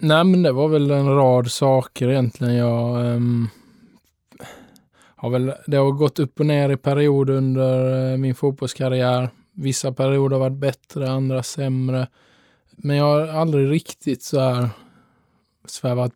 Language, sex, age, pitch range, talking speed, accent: Swedish, male, 20-39, 120-135 Hz, 145 wpm, Norwegian